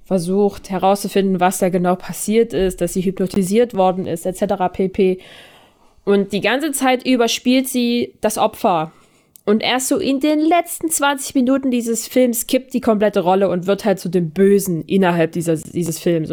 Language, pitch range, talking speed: German, 175-230 Hz, 170 wpm